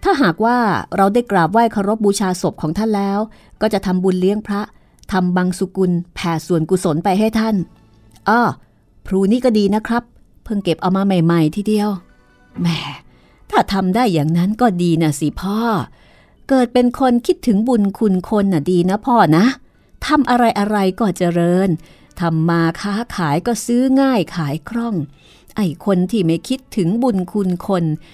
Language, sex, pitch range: Thai, female, 180-235 Hz